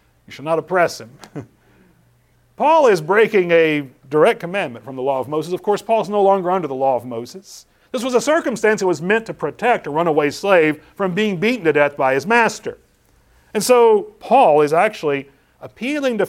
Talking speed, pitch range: 195 wpm, 145-220 Hz